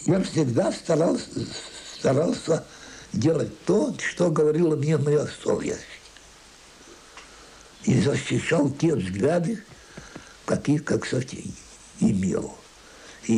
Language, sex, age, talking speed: Russian, male, 60-79, 90 wpm